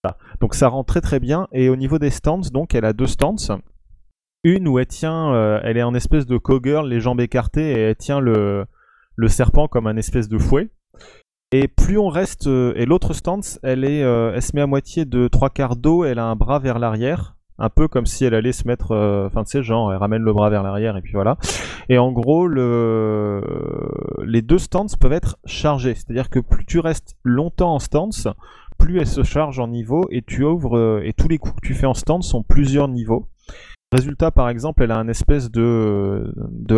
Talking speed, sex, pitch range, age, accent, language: 225 wpm, male, 110-140 Hz, 20-39, French, French